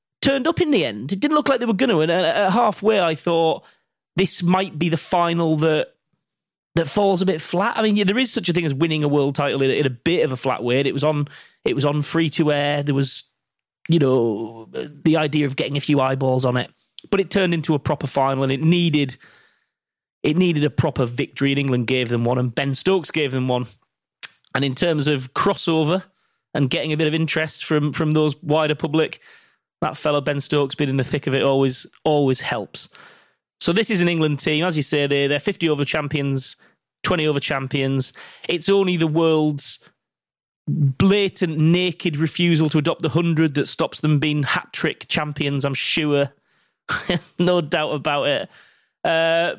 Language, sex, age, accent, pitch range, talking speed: English, male, 30-49, British, 140-170 Hz, 200 wpm